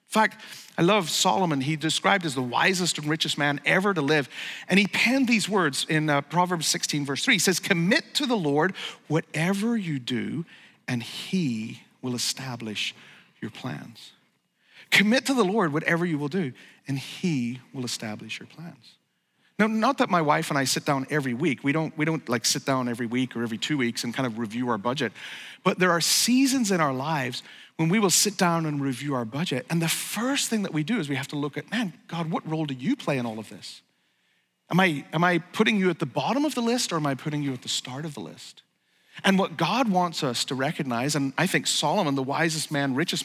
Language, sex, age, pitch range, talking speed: English, male, 40-59, 140-200 Hz, 230 wpm